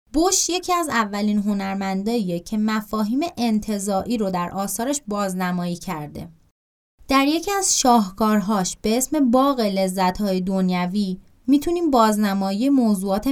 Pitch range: 185-235 Hz